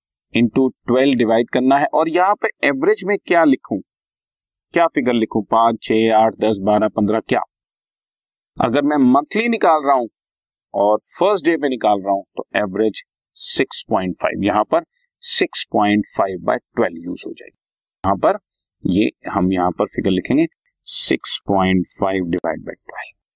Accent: native